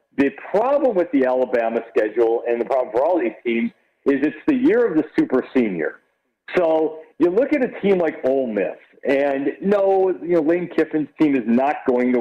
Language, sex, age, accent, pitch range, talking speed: English, male, 50-69, American, 125-170 Hz, 200 wpm